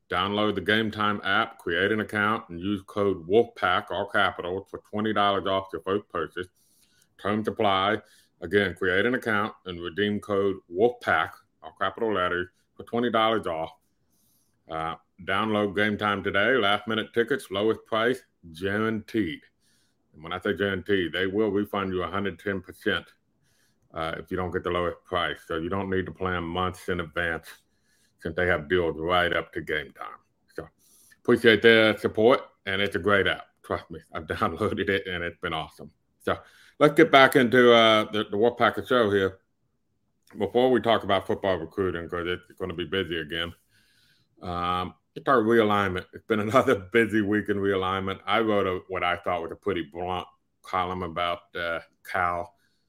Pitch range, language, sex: 90-105 Hz, English, male